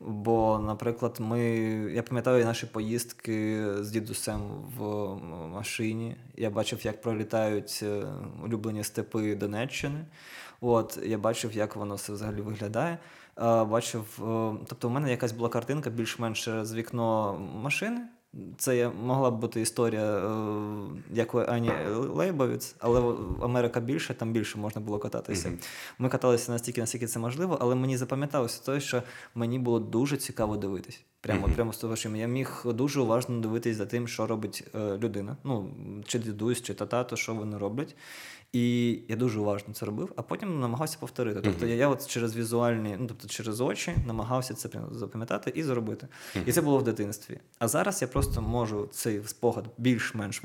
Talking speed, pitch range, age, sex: 155 wpm, 110-125 Hz, 20-39, male